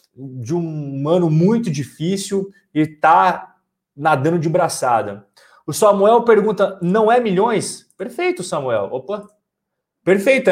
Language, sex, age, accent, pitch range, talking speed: Portuguese, male, 30-49, Brazilian, 165-210 Hz, 115 wpm